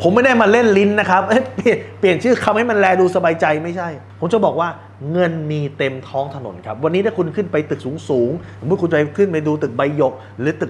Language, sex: Thai, male